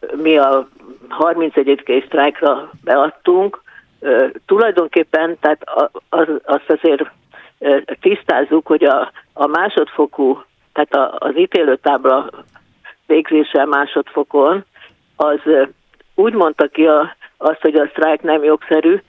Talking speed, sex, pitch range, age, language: 115 wpm, female, 150-200 Hz, 50-69, Hungarian